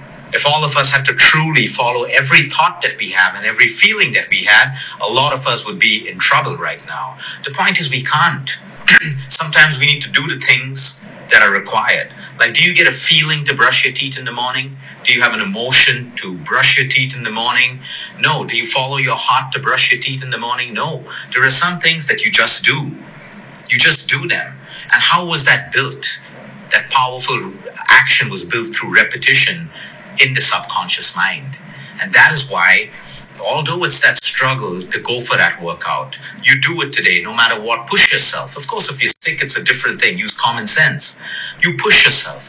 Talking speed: 210 wpm